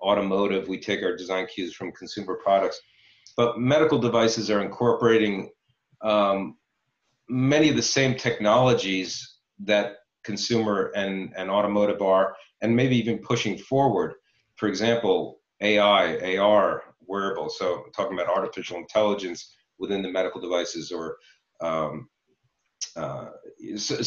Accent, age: American, 40-59